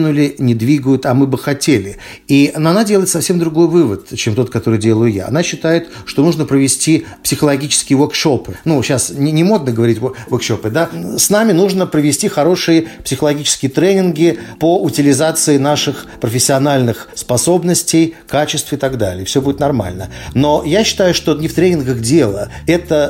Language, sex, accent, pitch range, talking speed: Russian, male, native, 125-175 Hz, 160 wpm